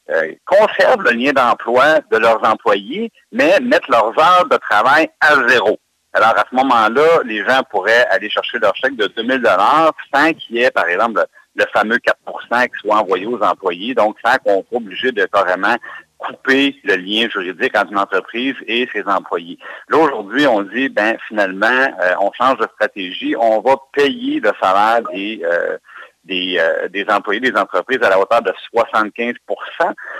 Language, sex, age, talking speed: French, male, 60-79, 175 wpm